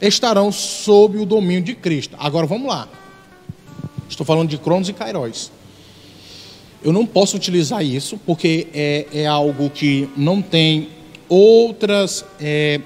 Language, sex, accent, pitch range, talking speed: Portuguese, male, Brazilian, 155-210 Hz, 130 wpm